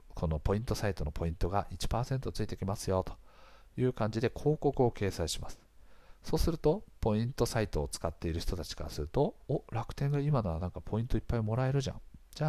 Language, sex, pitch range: Japanese, male, 85-125 Hz